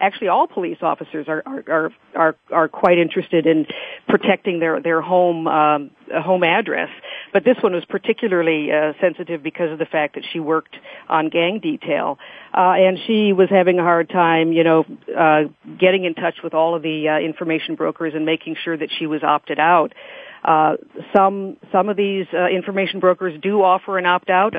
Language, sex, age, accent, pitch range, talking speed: English, female, 50-69, American, 160-190 Hz, 190 wpm